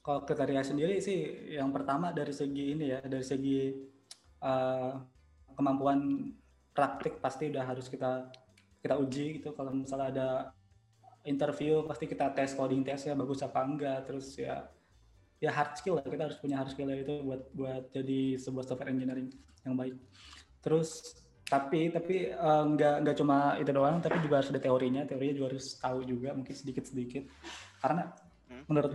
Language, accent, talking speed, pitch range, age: Indonesian, native, 155 wpm, 130-145 Hz, 20-39